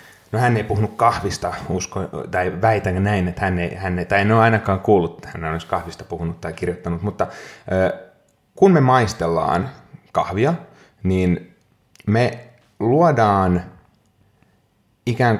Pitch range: 90-120 Hz